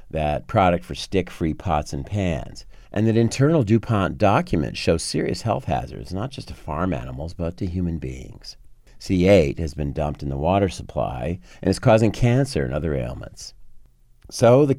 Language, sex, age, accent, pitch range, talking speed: English, male, 40-59, American, 75-105 Hz, 170 wpm